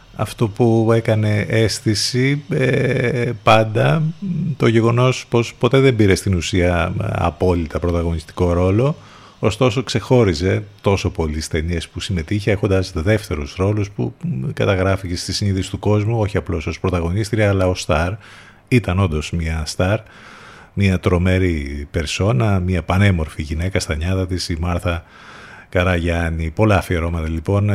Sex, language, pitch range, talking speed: male, Greek, 90-115 Hz, 125 wpm